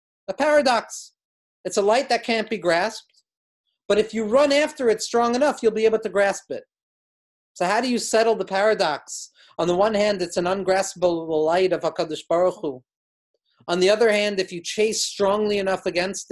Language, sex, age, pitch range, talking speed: English, male, 40-59, 175-220 Hz, 190 wpm